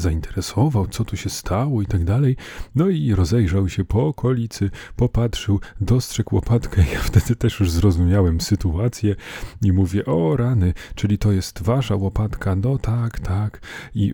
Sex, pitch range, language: male, 85-110 Hz, Polish